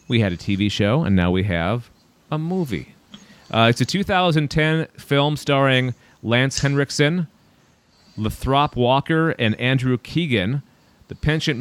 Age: 30-49